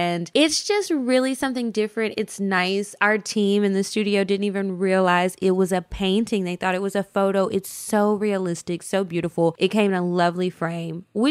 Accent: American